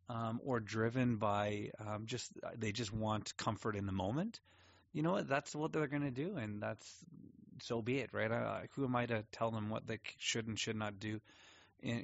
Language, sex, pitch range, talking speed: English, male, 100-120 Hz, 210 wpm